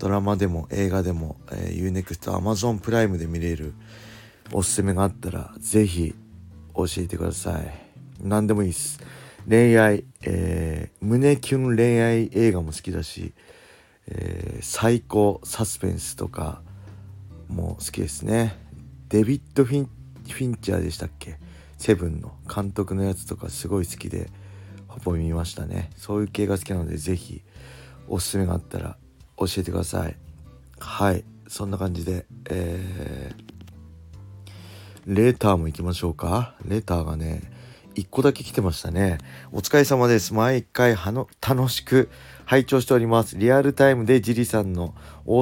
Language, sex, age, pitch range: Japanese, male, 40-59, 90-115 Hz